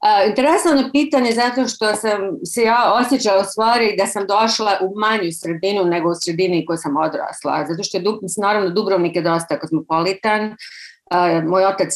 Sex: female